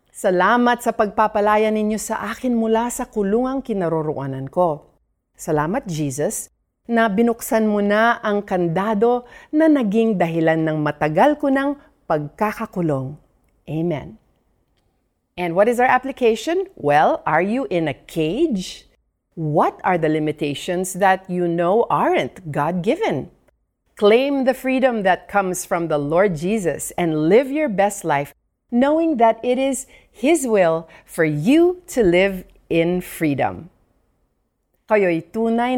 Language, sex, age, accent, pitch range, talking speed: Filipino, female, 40-59, native, 160-235 Hz, 125 wpm